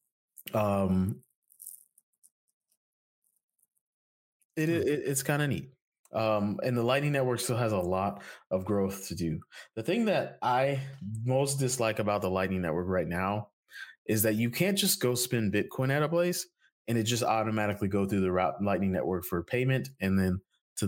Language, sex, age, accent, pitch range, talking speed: English, male, 20-39, American, 95-130 Hz, 165 wpm